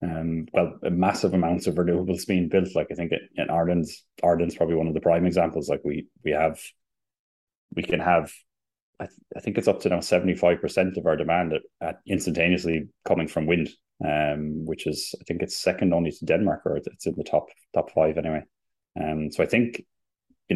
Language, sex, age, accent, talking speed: English, male, 20-39, Irish, 205 wpm